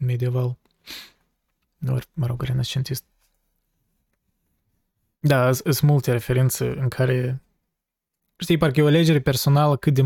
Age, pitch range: 20-39, 125-145 Hz